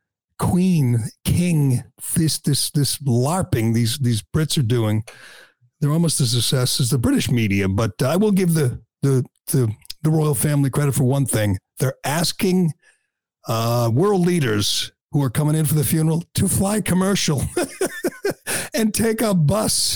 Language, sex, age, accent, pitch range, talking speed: English, male, 50-69, American, 125-170 Hz, 155 wpm